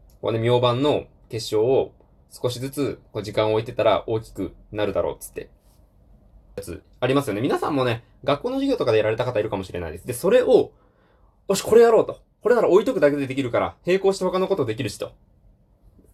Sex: male